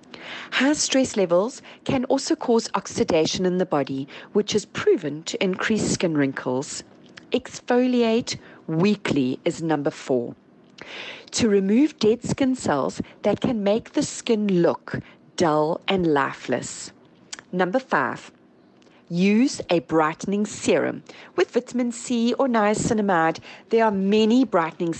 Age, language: 40-59, English